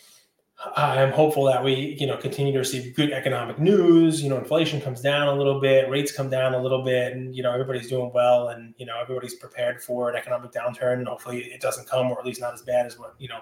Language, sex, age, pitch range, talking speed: English, male, 20-39, 125-145 Hz, 250 wpm